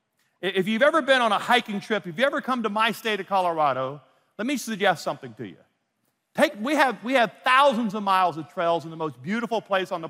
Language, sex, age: English, male, 50-69